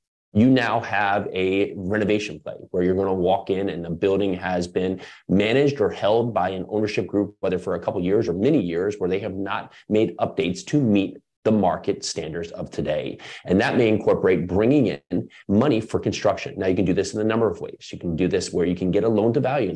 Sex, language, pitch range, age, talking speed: male, English, 90-115 Hz, 30-49, 230 wpm